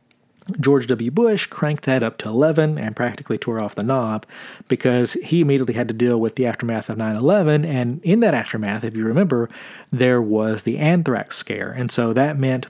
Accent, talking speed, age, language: American, 195 wpm, 40-59, English